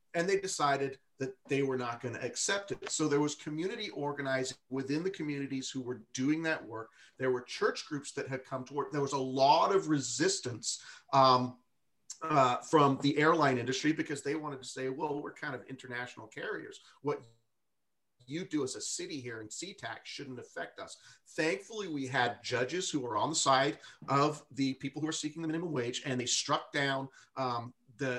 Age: 40-59